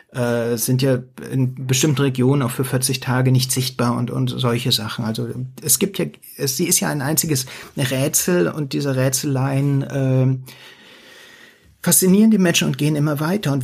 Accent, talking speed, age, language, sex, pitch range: German, 165 wpm, 60-79, German, male, 125-145 Hz